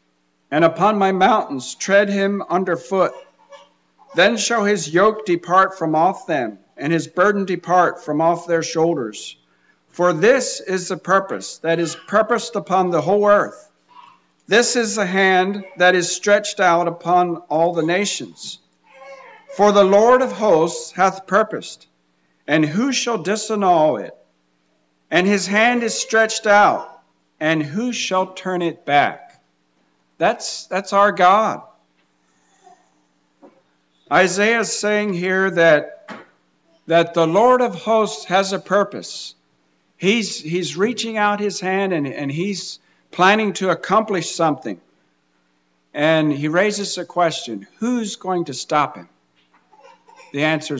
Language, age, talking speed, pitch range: English, 50-69, 135 wpm, 145-200 Hz